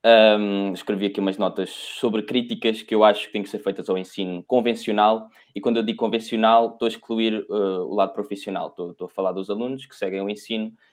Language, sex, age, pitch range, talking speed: Portuguese, male, 20-39, 100-120 Hz, 215 wpm